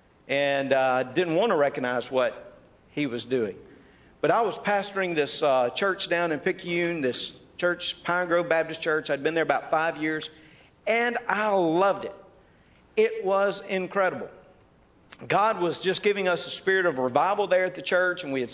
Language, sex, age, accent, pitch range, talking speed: English, male, 50-69, American, 170-230 Hz, 180 wpm